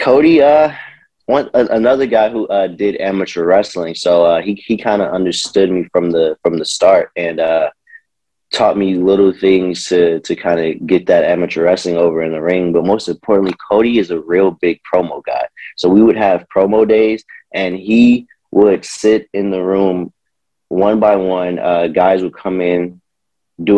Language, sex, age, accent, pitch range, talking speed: English, male, 30-49, American, 90-105 Hz, 185 wpm